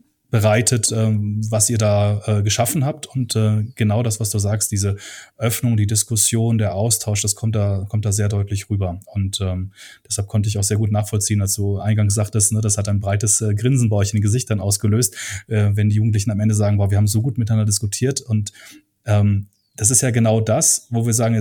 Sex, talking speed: male, 220 wpm